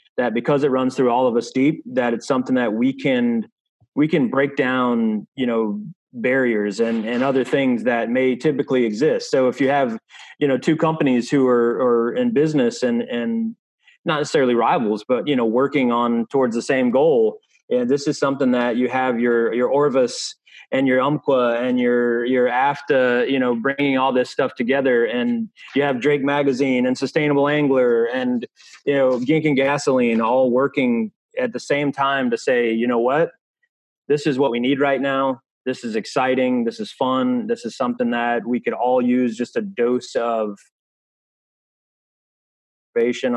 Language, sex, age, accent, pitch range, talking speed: English, male, 30-49, American, 120-160 Hz, 185 wpm